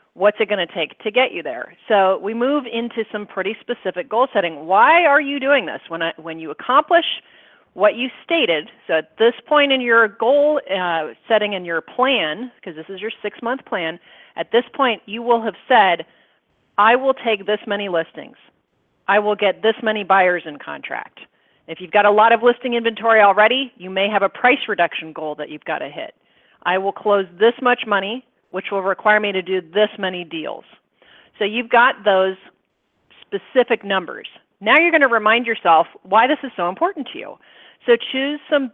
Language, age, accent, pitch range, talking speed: English, 40-59, American, 190-250 Hz, 195 wpm